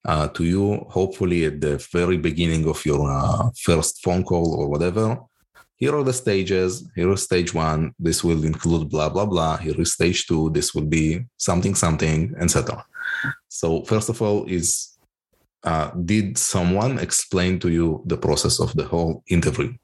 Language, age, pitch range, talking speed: English, 20-39, 80-100 Hz, 170 wpm